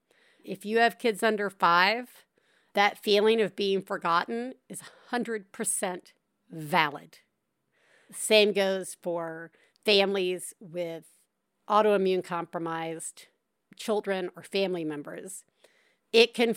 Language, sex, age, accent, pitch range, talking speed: English, female, 50-69, American, 185-235 Hz, 100 wpm